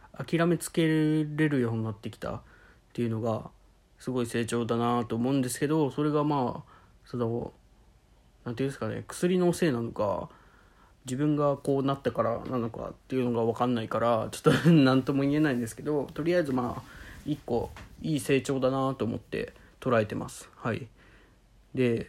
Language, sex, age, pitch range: Japanese, male, 20-39, 115-140 Hz